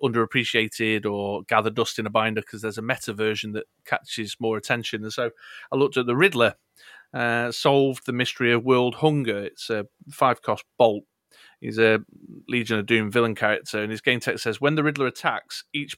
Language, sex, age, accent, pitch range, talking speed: English, male, 30-49, British, 110-135 Hz, 190 wpm